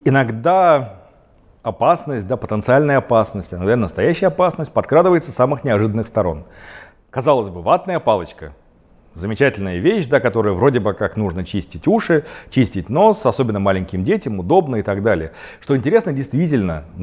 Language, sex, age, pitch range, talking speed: Russian, male, 40-59, 100-150 Hz, 130 wpm